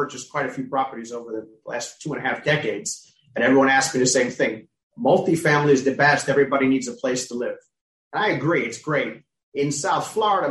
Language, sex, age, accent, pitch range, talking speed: English, male, 30-49, American, 130-155 Hz, 215 wpm